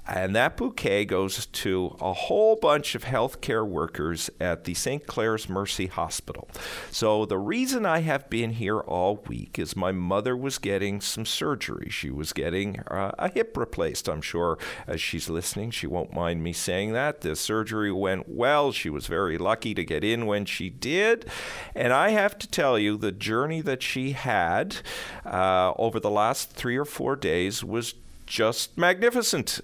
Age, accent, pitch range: 50-69, American, 100-150 Hz